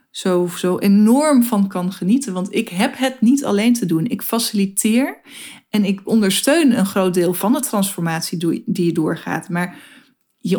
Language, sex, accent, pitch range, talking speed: Dutch, female, Dutch, 195-250 Hz, 165 wpm